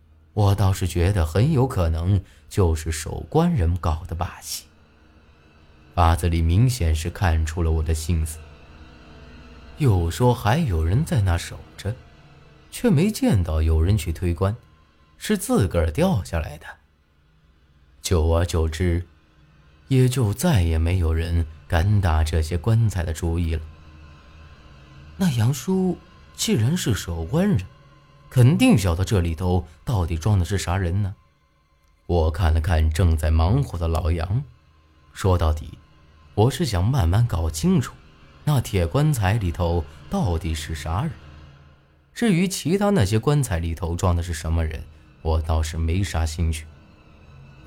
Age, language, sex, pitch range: 30-49, Chinese, male, 80-100 Hz